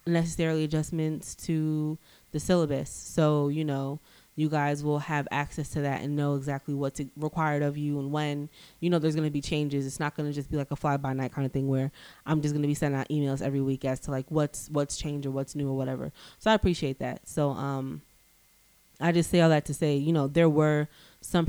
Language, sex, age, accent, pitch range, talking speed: English, female, 20-39, American, 140-155 Hz, 235 wpm